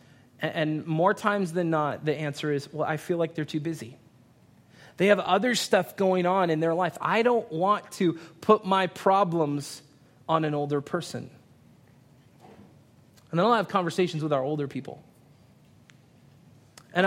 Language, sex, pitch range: English, male, 140-190 Hz